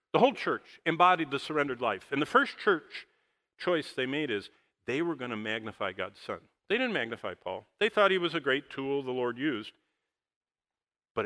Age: 50-69